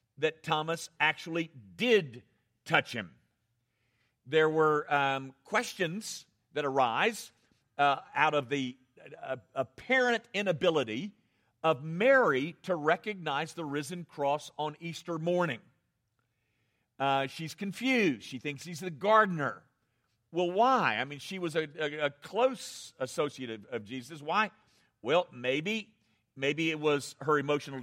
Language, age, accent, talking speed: English, 50-69, American, 125 wpm